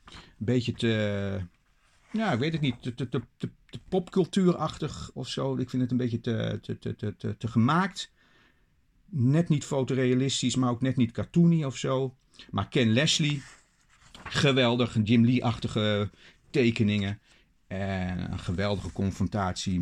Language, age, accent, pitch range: Dutch, 50-69, Dutch, 105-130 Hz